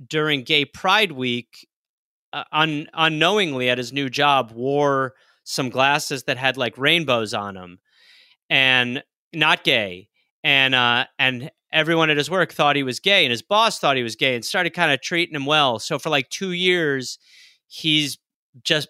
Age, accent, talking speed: 30-49, American, 170 wpm